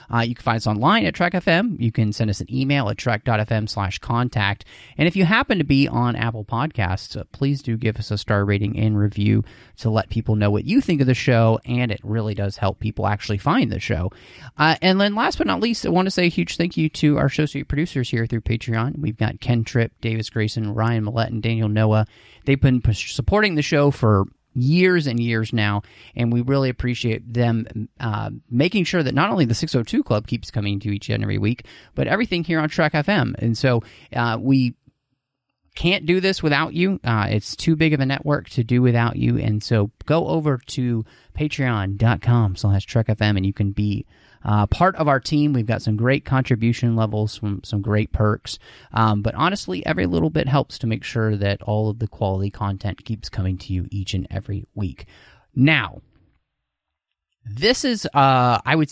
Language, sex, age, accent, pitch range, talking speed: English, male, 30-49, American, 105-140 Hz, 210 wpm